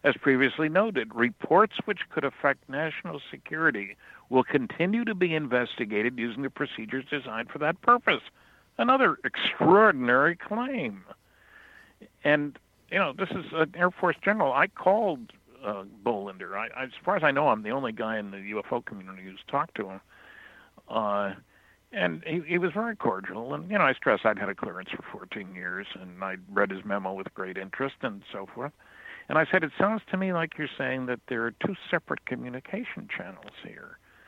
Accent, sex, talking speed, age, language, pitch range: American, male, 180 wpm, 60-79, English, 105-170 Hz